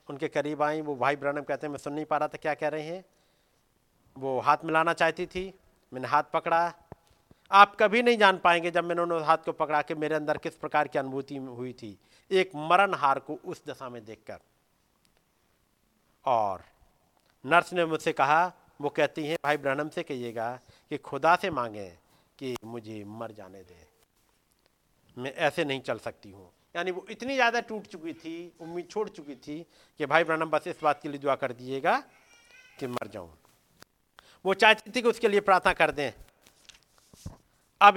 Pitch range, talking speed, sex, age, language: 140-190 Hz, 185 wpm, male, 50-69, Hindi